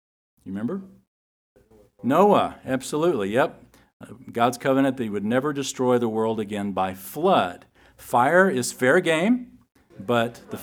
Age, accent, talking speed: 50-69, American, 125 wpm